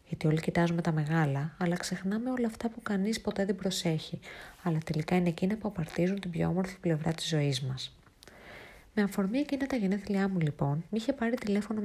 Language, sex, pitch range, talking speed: Greek, female, 160-205 Hz, 190 wpm